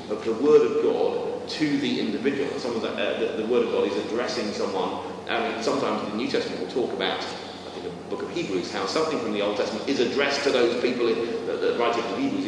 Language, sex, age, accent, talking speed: English, male, 40-59, British, 250 wpm